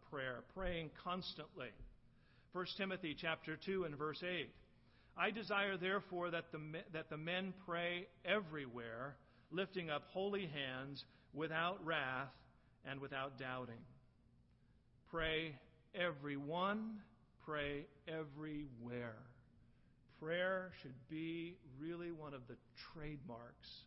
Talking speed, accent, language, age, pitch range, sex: 100 wpm, American, English, 50-69, 135-180 Hz, male